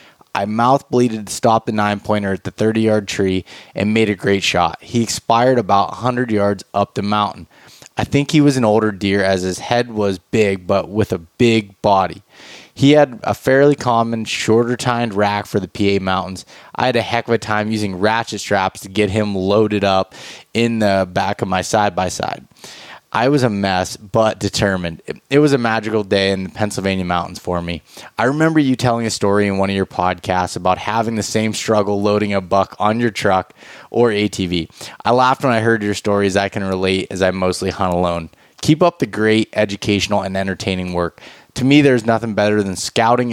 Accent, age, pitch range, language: American, 20-39, 95-115 Hz, English